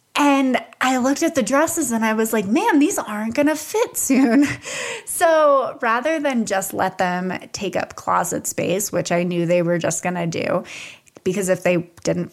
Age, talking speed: 20-39, 195 wpm